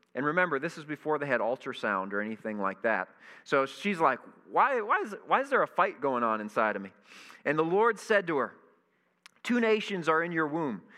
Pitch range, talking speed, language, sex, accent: 120-160 Hz, 220 wpm, English, male, American